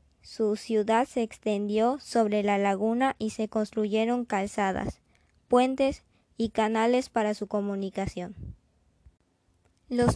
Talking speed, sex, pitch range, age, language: 105 wpm, male, 205-235 Hz, 20-39, Spanish